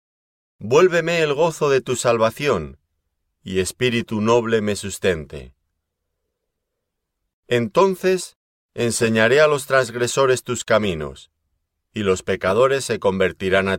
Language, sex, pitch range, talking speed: Spanish, male, 80-125 Hz, 105 wpm